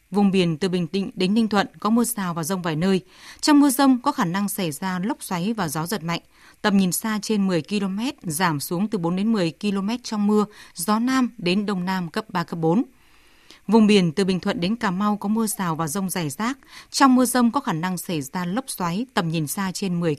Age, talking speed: 20-39, 245 wpm